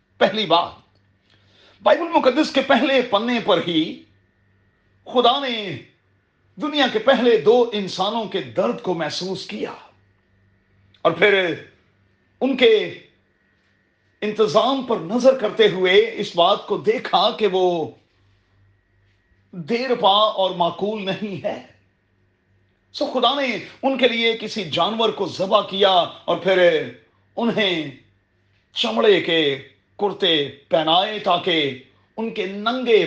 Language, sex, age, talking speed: Urdu, male, 40-59, 115 wpm